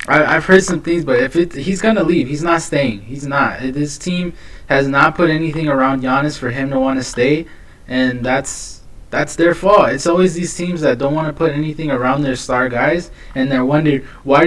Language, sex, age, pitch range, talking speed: English, male, 20-39, 120-165 Hz, 230 wpm